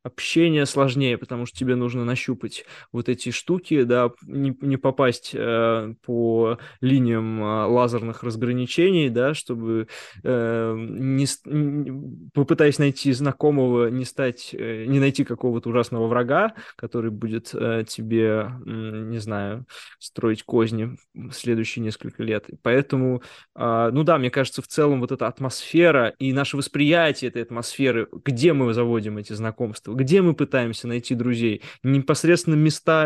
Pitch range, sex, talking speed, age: 115-140 Hz, male, 135 wpm, 20-39